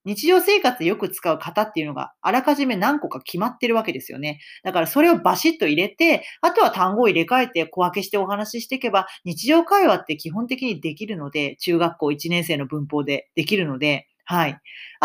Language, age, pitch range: Japanese, 40-59, 165-265 Hz